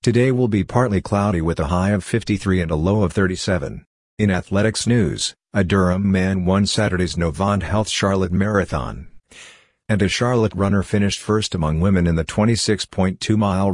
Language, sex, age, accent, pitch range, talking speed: English, male, 50-69, American, 90-105 Hz, 165 wpm